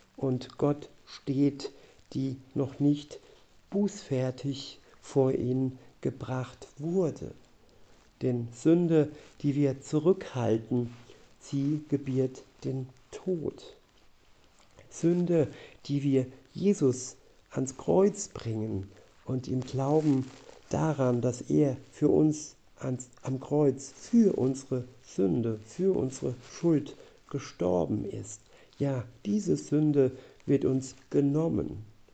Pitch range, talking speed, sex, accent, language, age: 125-145 Hz, 95 wpm, male, German, German, 50-69